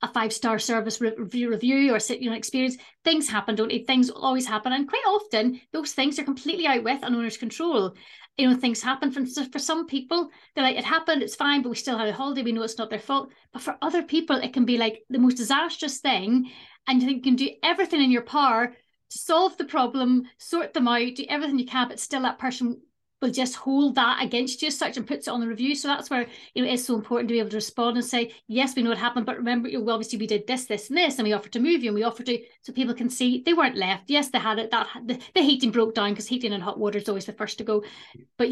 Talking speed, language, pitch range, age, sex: 275 wpm, English, 225-275 Hz, 30-49, female